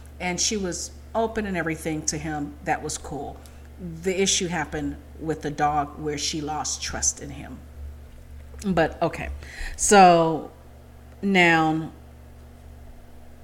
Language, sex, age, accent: English, female, 40-59, American